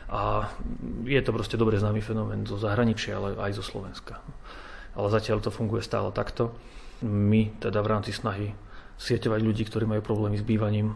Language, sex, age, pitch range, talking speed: Slovak, male, 30-49, 105-115 Hz, 170 wpm